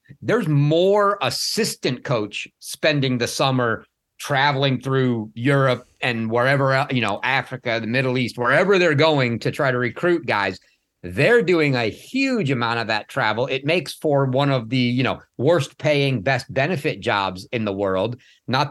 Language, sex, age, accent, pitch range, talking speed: English, male, 50-69, American, 120-145 Hz, 165 wpm